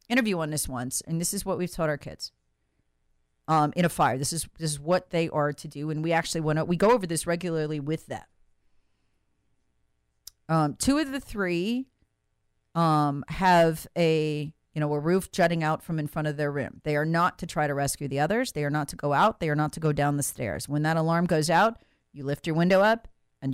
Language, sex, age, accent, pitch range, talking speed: English, female, 40-59, American, 140-175 Hz, 230 wpm